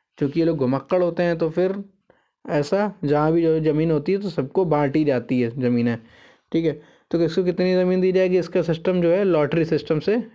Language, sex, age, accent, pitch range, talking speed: Hindi, male, 20-39, native, 145-180 Hz, 215 wpm